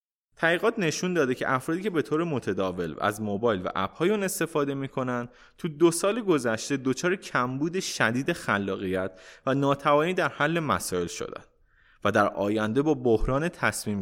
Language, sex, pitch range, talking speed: Persian, male, 115-175 Hz, 155 wpm